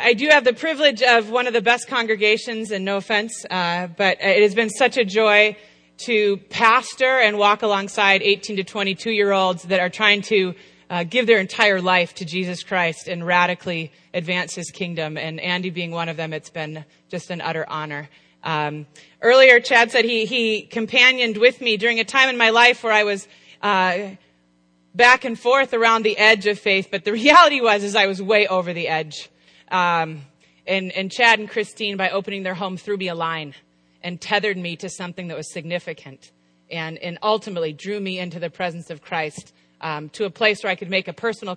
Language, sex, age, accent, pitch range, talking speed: English, female, 30-49, American, 170-215 Hz, 200 wpm